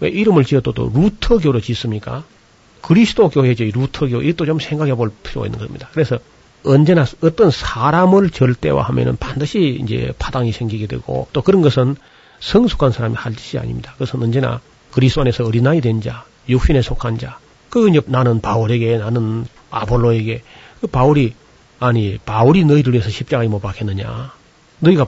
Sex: male